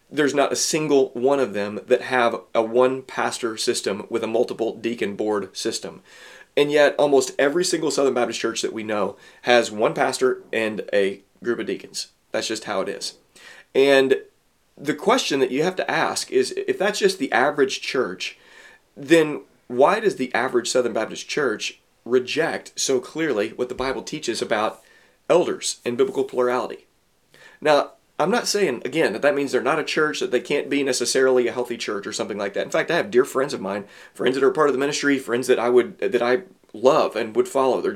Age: 30-49